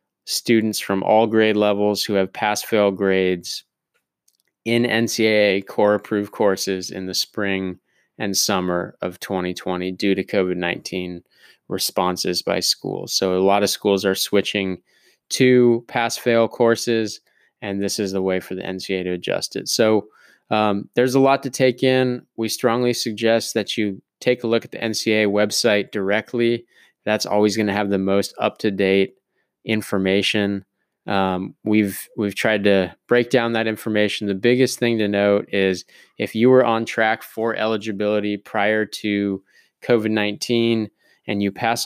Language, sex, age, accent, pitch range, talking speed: English, male, 20-39, American, 95-115 Hz, 150 wpm